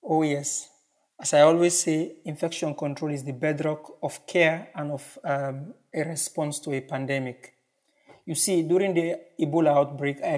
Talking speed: 160 wpm